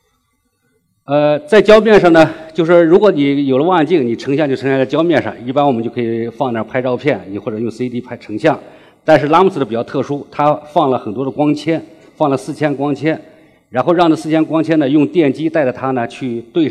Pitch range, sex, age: 115-150 Hz, male, 50-69